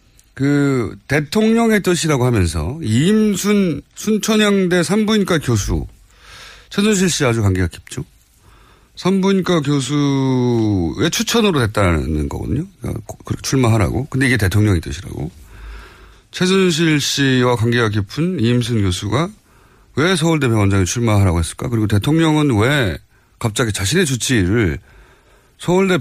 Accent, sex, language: native, male, Korean